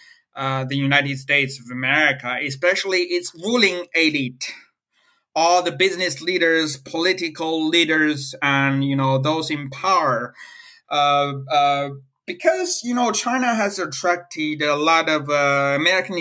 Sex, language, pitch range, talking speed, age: male, English, 145-185 Hz, 130 wpm, 30-49